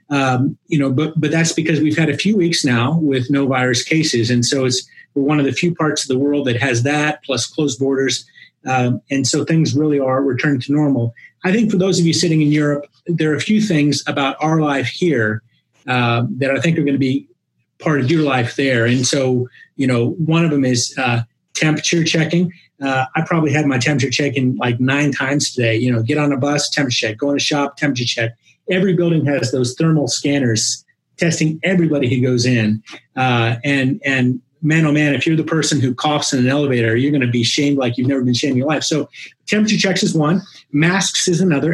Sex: male